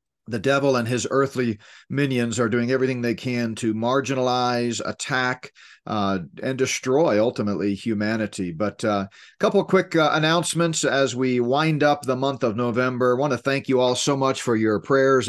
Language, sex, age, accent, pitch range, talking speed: English, male, 40-59, American, 115-140 Hz, 180 wpm